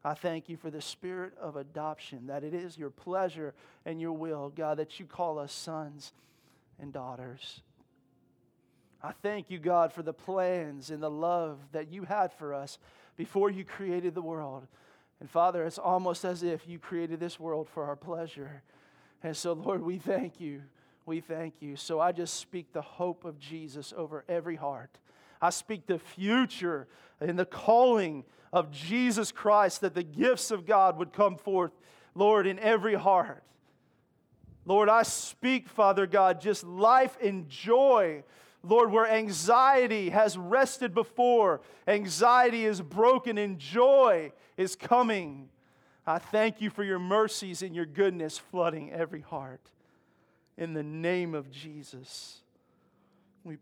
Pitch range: 155-200 Hz